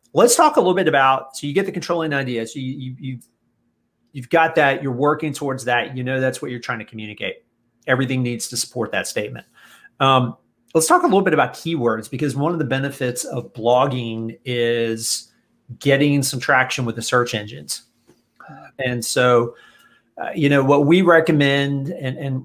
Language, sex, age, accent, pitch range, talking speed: English, male, 30-49, American, 120-140 Hz, 185 wpm